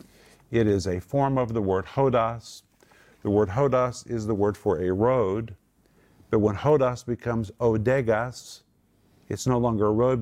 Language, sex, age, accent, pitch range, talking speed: English, male, 50-69, American, 95-115 Hz, 160 wpm